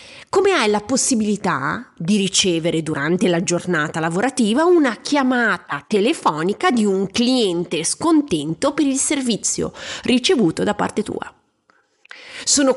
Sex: female